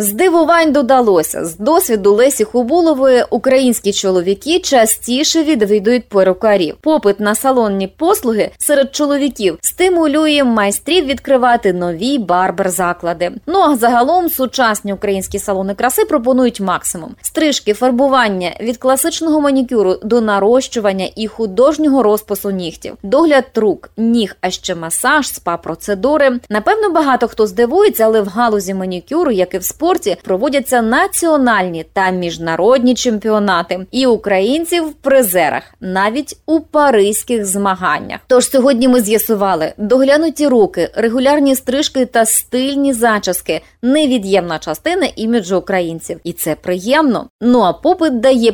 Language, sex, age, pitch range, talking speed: Ukrainian, female, 20-39, 190-275 Hz, 120 wpm